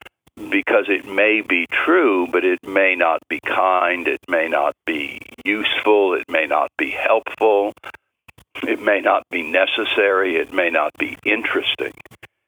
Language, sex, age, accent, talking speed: English, male, 60-79, American, 150 wpm